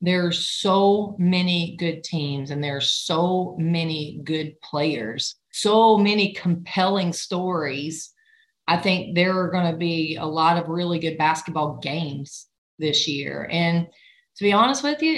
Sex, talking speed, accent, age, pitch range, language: female, 155 wpm, American, 30-49, 155-180 Hz, English